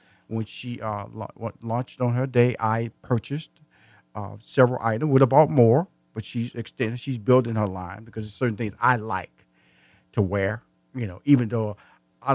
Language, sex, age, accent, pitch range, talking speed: English, male, 40-59, American, 110-170 Hz, 175 wpm